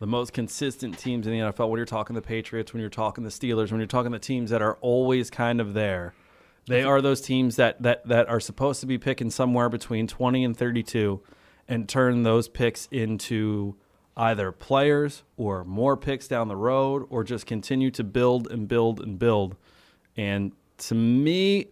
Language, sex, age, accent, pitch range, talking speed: English, male, 30-49, American, 115-130 Hz, 195 wpm